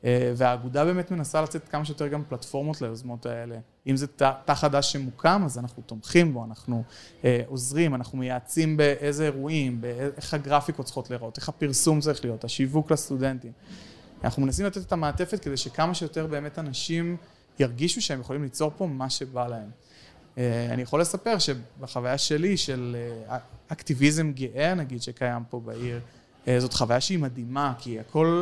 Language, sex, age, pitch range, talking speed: Hebrew, male, 30-49, 125-160 Hz, 165 wpm